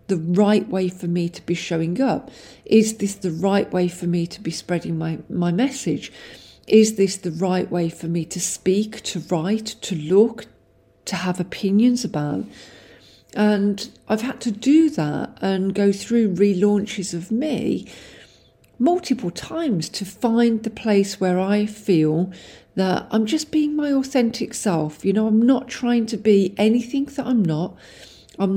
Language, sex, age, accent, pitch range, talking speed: English, female, 50-69, British, 175-220 Hz, 165 wpm